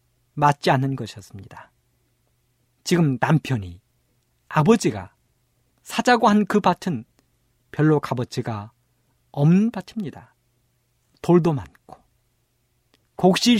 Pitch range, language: 120-185 Hz, Korean